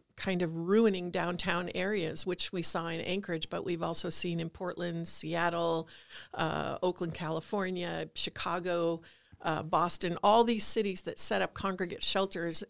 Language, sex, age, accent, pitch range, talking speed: English, female, 50-69, American, 170-195 Hz, 145 wpm